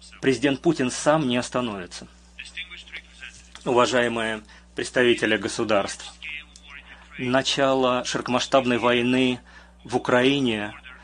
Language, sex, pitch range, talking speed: Russian, male, 105-135 Hz, 70 wpm